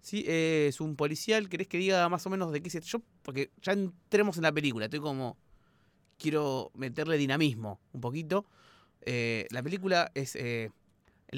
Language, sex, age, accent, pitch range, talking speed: Spanish, male, 30-49, Argentinian, 135-195 Hz, 175 wpm